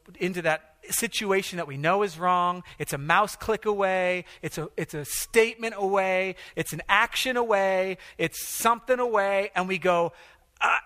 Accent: American